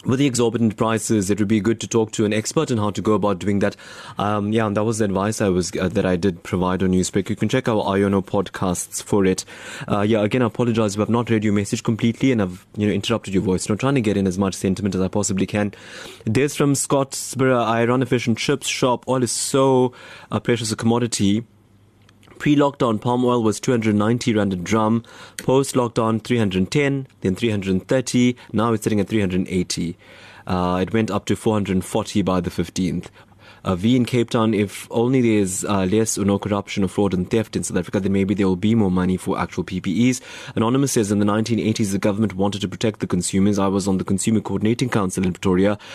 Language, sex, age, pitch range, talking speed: English, male, 20-39, 95-115 Hz, 225 wpm